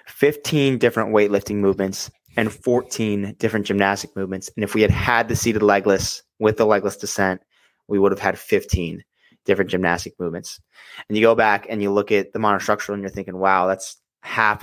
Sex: male